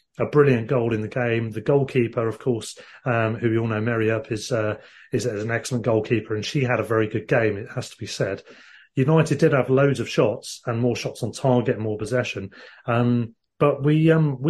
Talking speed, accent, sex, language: 215 wpm, British, male, English